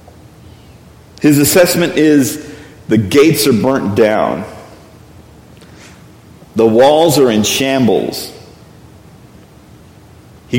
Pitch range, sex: 140-190 Hz, male